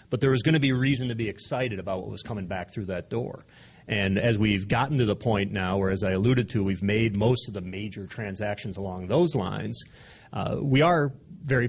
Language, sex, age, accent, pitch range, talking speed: English, male, 40-59, American, 95-125 Hz, 230 wpm